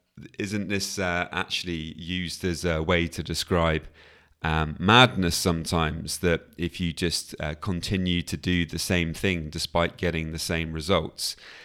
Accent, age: British, 30-49